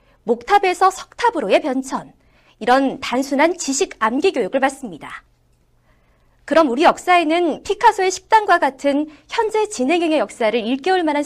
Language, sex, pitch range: Korean, female, 235-345 Hz